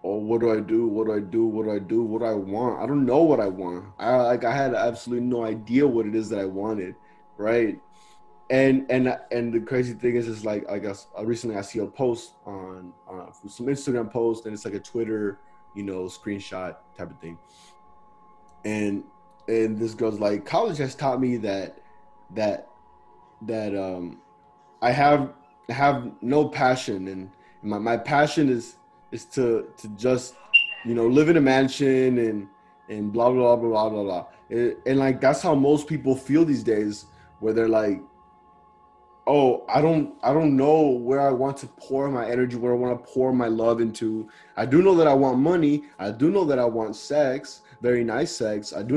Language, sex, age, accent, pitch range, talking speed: English, male, 20-39, American, 105-135 Hz, 200 wpm